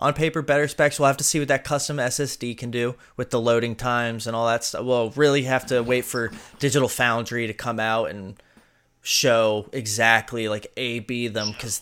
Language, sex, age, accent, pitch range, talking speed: English, male, 20-39, American, 110-130 Hz, 210 wpm